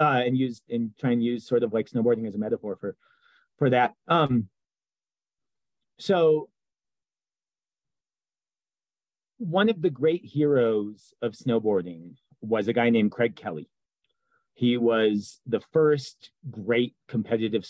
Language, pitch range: English, 105-130 Hz